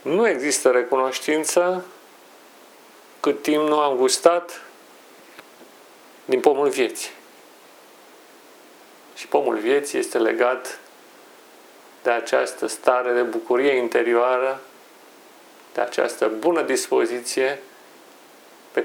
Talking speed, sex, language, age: 85 wpm, male, Romanian, 40-59